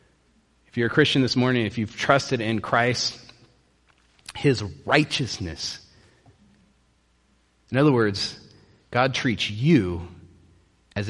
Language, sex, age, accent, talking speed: English, male, 30-49, American, 110 wpm